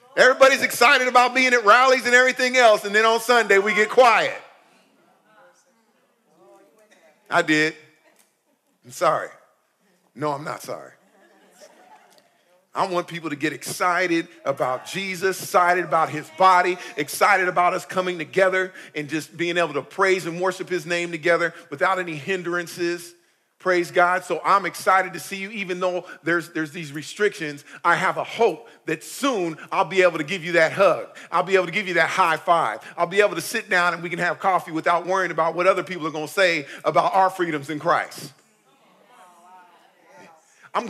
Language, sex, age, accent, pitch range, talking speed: English, male, 40-59, American, 170-195 Hz, 175 wpm